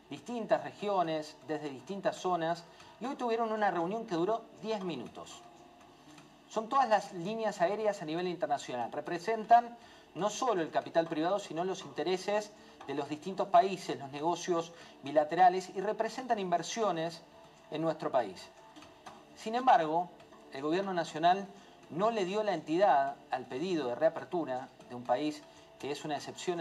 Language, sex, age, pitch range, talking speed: Spanish, male, 40-59, 150-210 Hz, 145 wpm